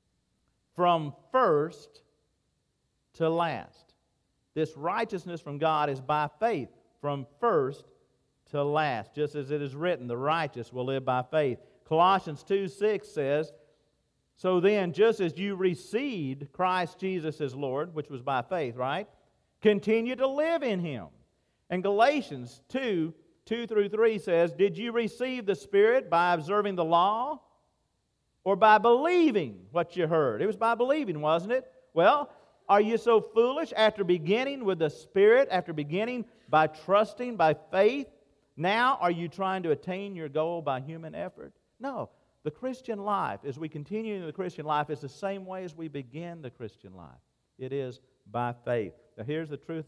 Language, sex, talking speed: English, male, 160 wpm